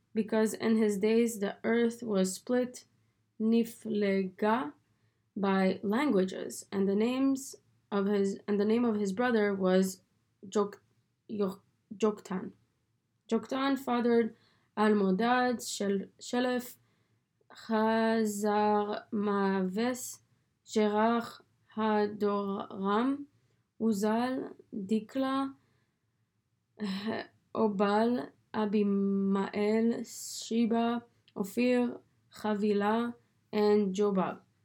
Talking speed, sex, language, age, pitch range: 70 wpm, female, English, 20-39, 200-230 Hz